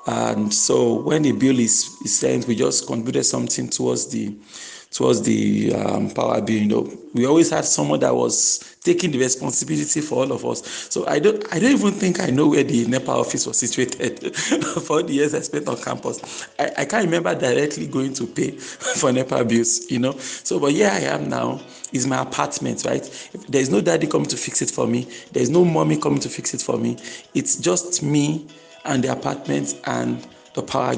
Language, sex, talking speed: English, male, 215 wpm